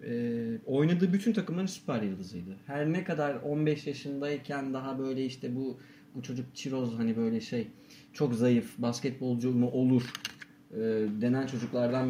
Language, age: Turkish, 40-59